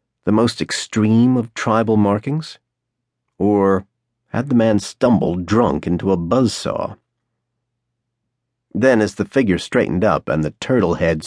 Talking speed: 135 wpm